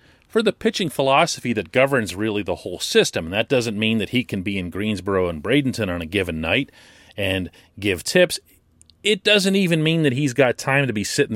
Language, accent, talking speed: English, American, 210 wpm